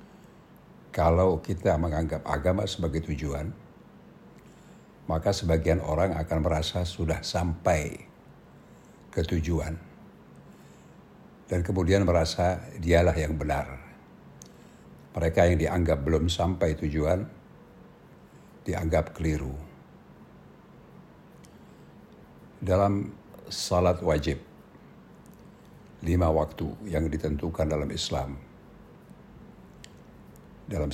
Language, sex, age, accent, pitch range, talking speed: Indonesian, male, 60-79, native, 80-95 Hz, 75 wpm